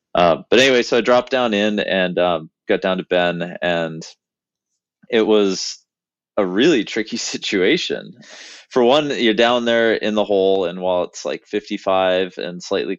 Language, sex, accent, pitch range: English, male, American, 85-105 Hz